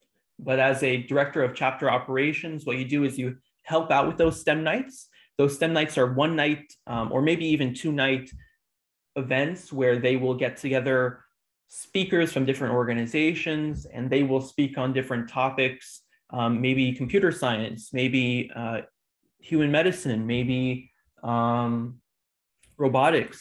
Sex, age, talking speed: male, 20-39, 150 wpm